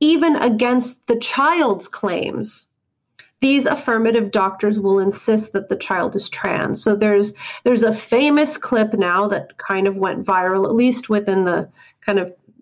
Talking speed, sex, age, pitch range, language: 155 wpm, female, 30-49, 205-245 Hz, English